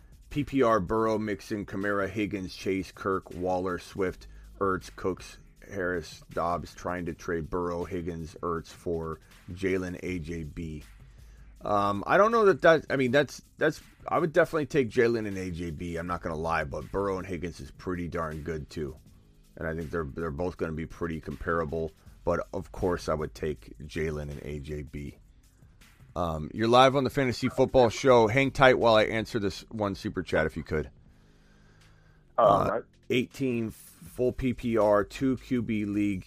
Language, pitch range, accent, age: English, 85-110 Hz, American, 30-49